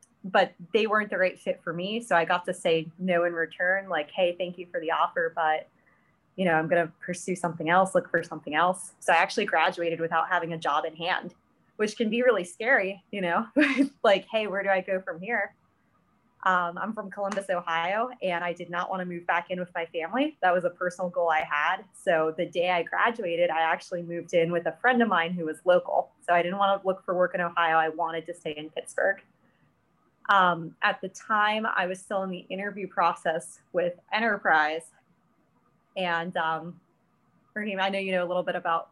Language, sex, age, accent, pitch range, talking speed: English, female, 20-39, American, 170-195 Hz, 215 wpm